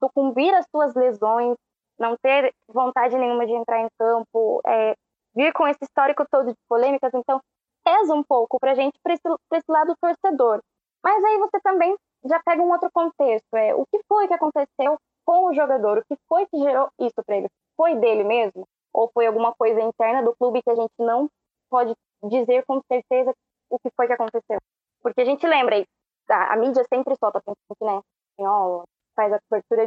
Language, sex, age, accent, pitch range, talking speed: Portuguese, female, 10-29, Brazilian, 235-320 Hz, 190 wpm